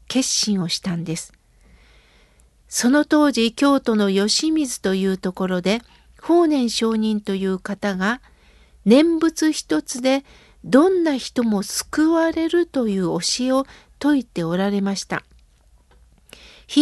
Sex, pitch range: female, 195-270 Hz